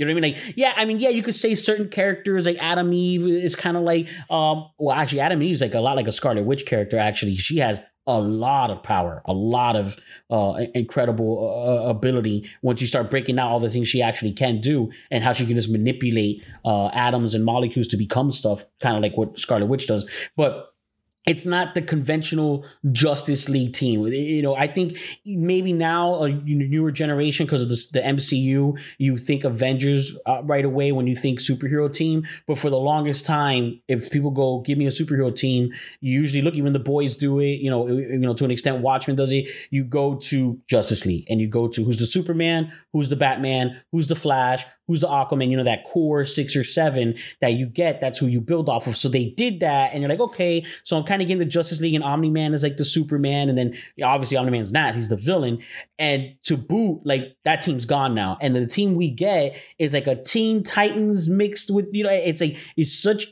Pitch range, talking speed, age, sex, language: 125-165 Hz, 230 wpm, 20-39, male, English